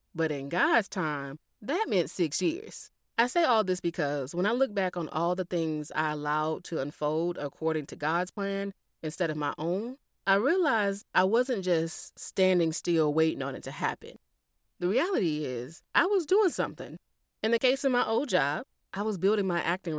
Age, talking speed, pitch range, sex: 20-39, 190 wpm, 155-210 Hz, female